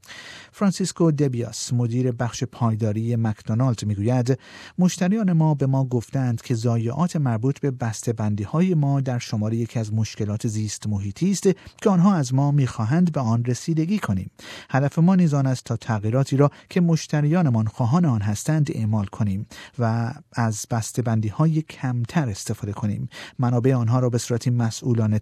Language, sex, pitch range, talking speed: Persian, male, 115-160 Hz, 155 wpm